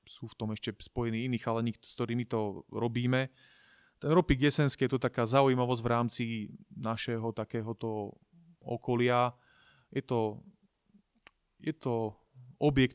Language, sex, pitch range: Slovak, male, 110-125 Hz